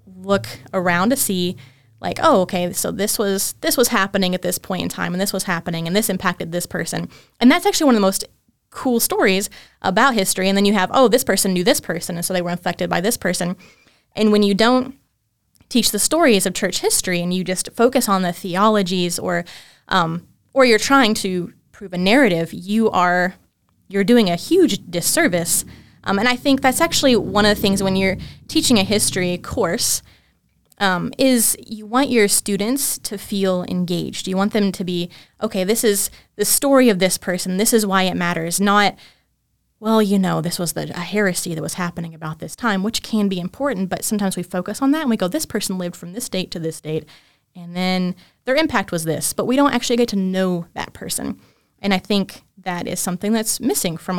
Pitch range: 180-220 Hz